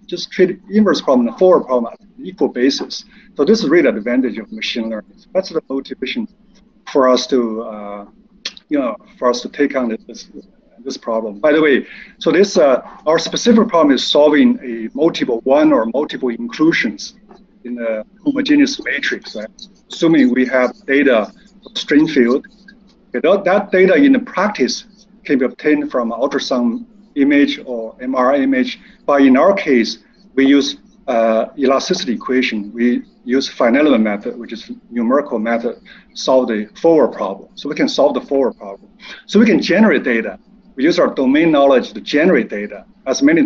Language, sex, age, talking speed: English, male, 50-69, 170 wpm